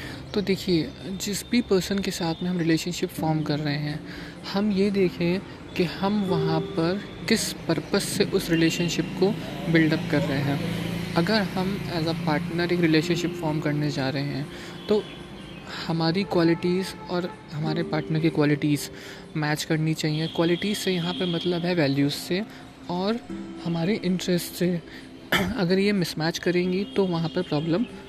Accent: native